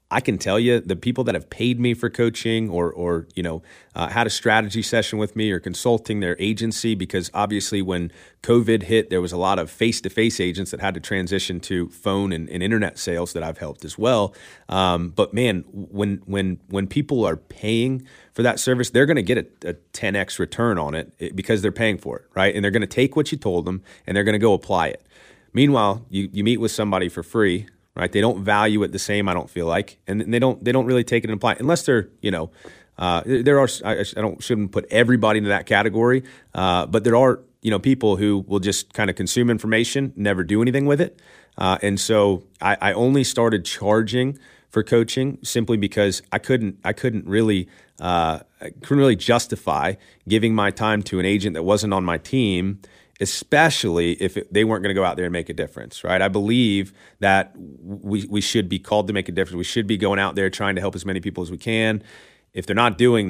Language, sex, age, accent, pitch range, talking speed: English, male, 30-49, American, 95-115 Hz, 230 wpm